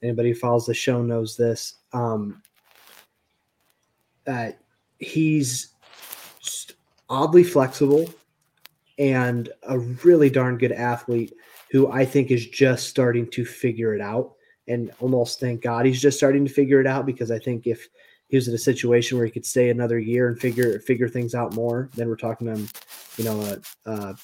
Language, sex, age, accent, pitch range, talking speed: English, male, 20-39, American, 120-135 Hz, 170 wpm